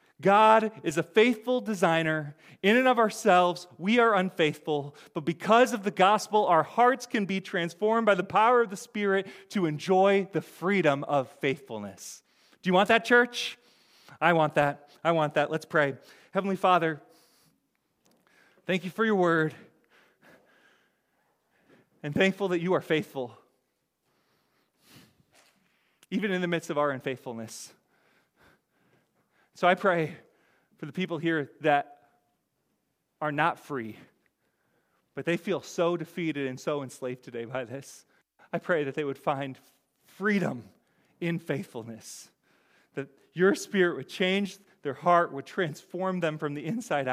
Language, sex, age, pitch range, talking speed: English, male, 30-49, 145-190 Hz, 140 wpm